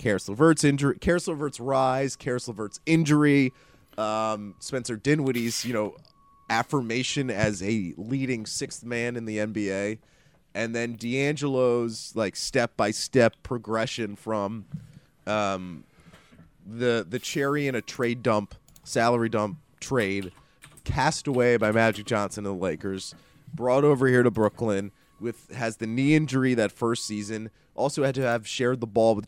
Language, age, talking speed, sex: English, 30-49, 145 wpm, male